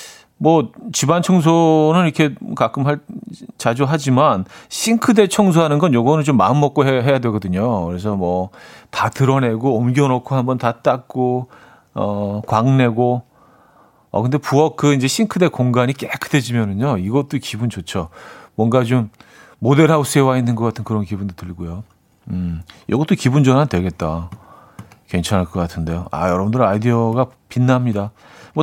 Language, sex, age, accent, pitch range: Korean, male, 40-59, native, 110-155 Hz